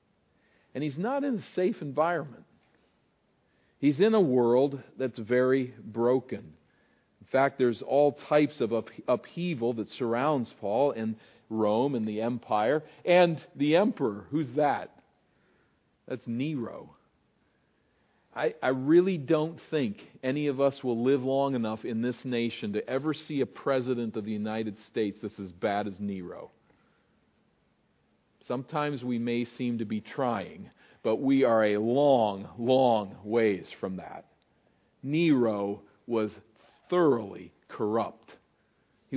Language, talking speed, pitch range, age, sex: English, 135 wpm, 115-150 Hz, 50-69, male